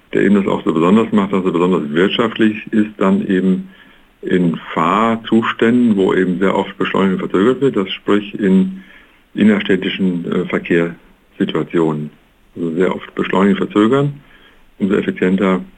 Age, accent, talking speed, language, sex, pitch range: 50-69, German, 140 wpm, German, male, 95-115 Hz